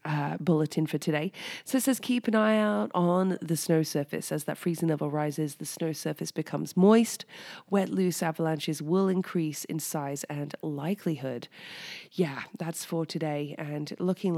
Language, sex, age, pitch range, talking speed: English, female, 20-39, 155-190 Hz, 165 wpm